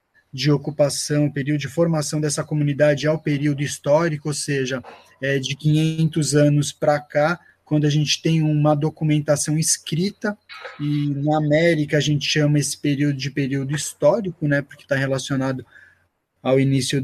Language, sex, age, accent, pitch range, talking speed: Portuguese, male, 20-39, Brazilian, 145-175 Hz, 150 wpm